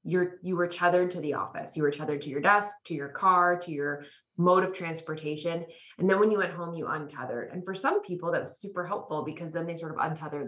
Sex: female